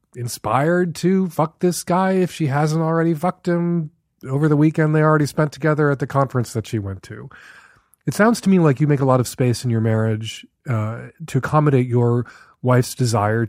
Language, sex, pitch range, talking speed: English, male, 115-150 Hz, 200 wpm